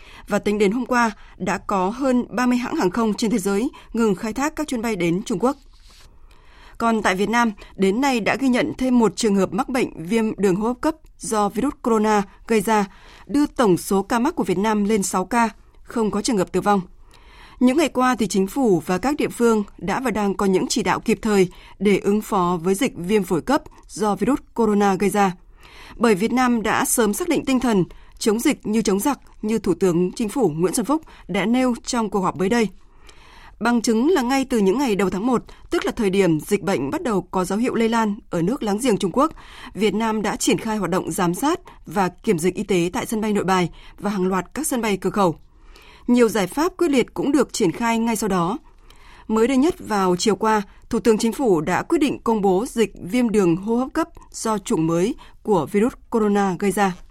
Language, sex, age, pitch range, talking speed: Vietnamese, female, 20-39, 195-245 Hz, 235 wpm